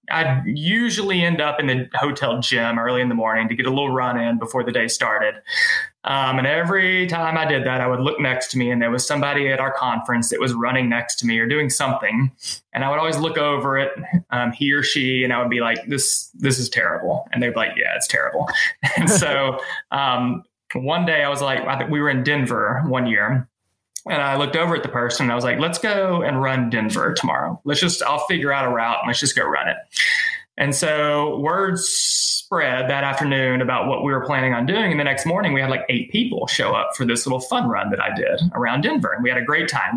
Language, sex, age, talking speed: English, male, 20-39, 245 wpm